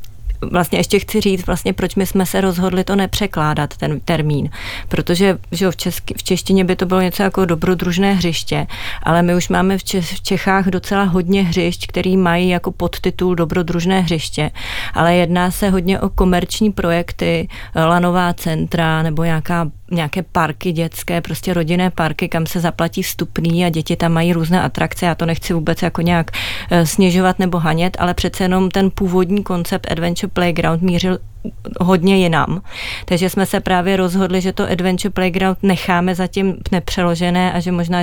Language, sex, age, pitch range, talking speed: Czech, female, 30-49, 170-190 Hz, 165 wpm